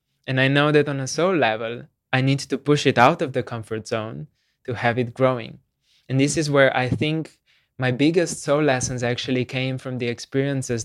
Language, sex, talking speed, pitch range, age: English, male, 205 wpm, 120-135 Hz, 20-39